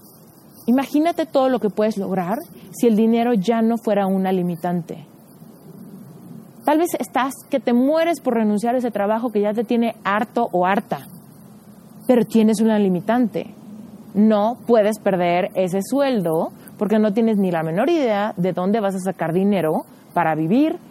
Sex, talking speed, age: female, 160 wpm, 30-49